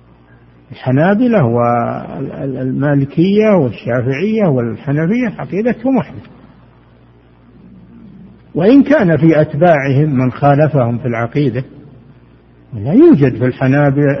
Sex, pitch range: male, 125-185 Hz